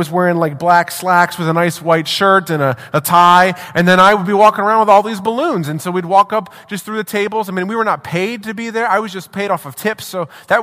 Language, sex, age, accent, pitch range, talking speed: English, male, 30-49, American, 155-215 Hz, 295 wpm